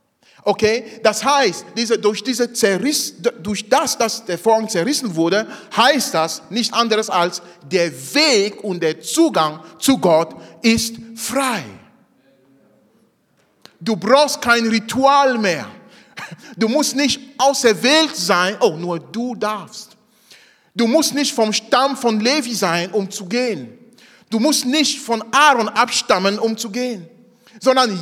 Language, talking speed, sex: German, 140 wpm, male